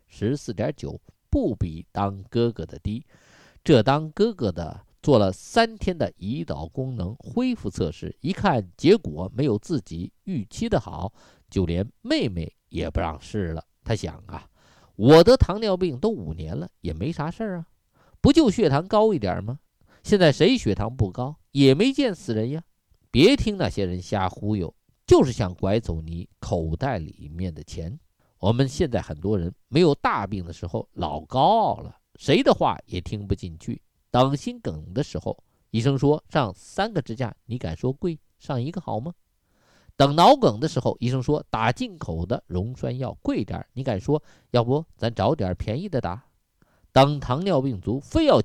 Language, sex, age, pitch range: Chinese, male, 50-69, 95-140 Hz